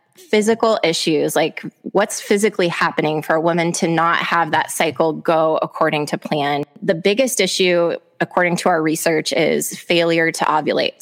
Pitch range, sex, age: 155-180 Hz, female, 20-39